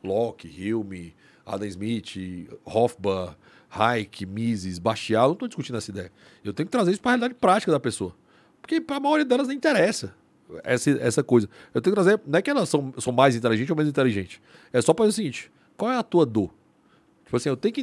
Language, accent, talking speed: Portuguese, Brazilian, 220 wpm